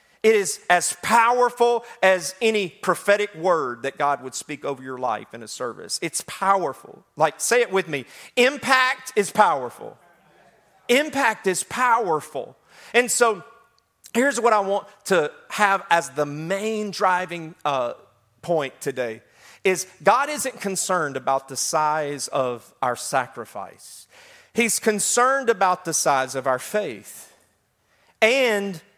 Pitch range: 135-205 Hz